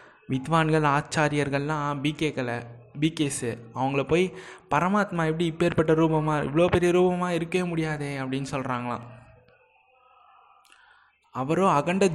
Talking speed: 95 wpm